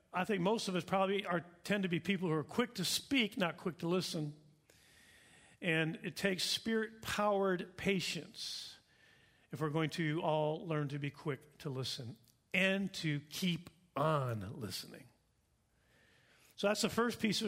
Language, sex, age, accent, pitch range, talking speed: English, male, 50-69, American, 160-205 Hz, 160 wpm